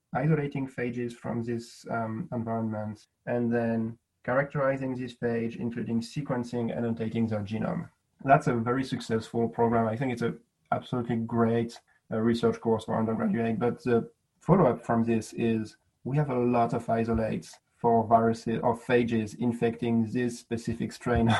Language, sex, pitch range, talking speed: English, male, 115-125 Hz, 150 wpm